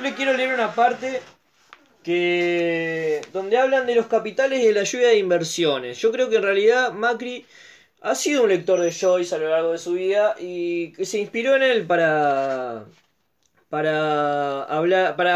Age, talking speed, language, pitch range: 20-39, 175 wpm, Spanish, 160-215 Hz